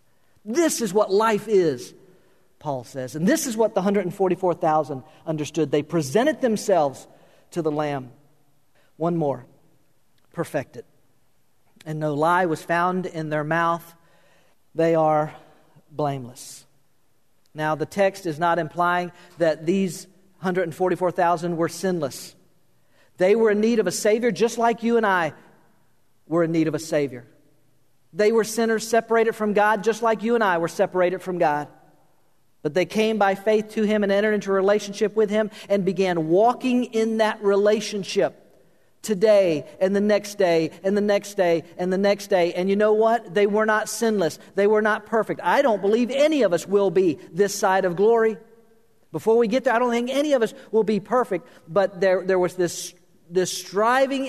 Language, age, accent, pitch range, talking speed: English, 50-69, American, 165-215 Hz, 170 wpm